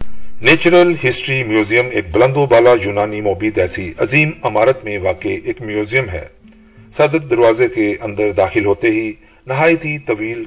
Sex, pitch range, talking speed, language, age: male, 105-160 Hz, 150 wpm, Urdu, 40-59